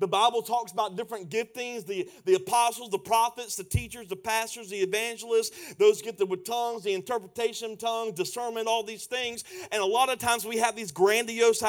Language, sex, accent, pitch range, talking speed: English, male, American, 190-240 Hz, 190 wpm